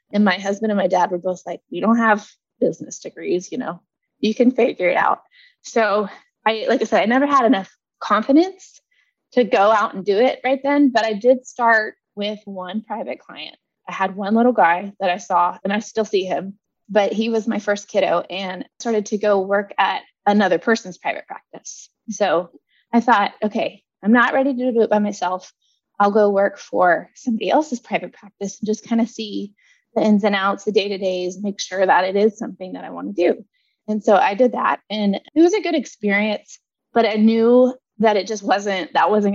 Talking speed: 210 wpm